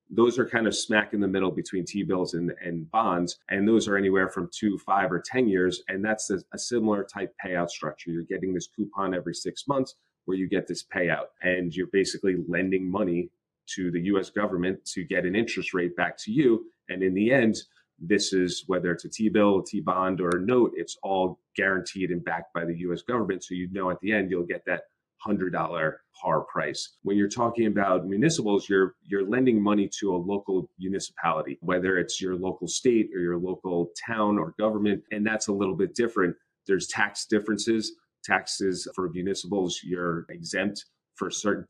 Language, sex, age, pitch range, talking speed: English, male, 30-49, 90-100 Hz, 195 wpm